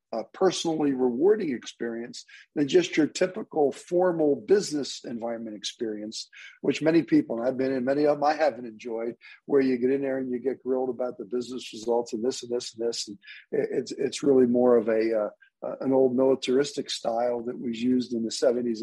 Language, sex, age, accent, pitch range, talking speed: English, male, 50-69, American, 120-175 Hz, 200 wpm